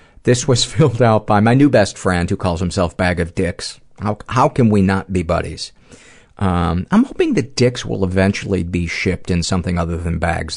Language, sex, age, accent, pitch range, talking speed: English, male, 50-69, American, 90-110 Hz, 205 wpm